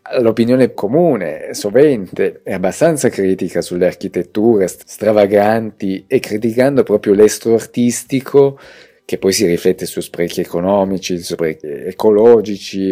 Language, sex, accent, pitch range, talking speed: Italian, male, native, 95-115 Hz, 105 wpm